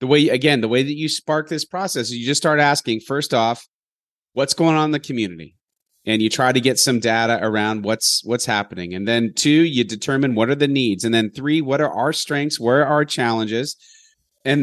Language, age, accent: English, 30-49, American